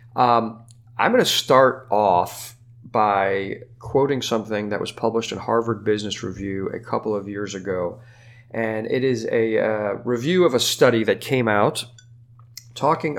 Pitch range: 110-120 Hz